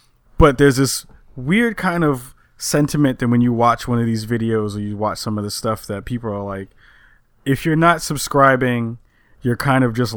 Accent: American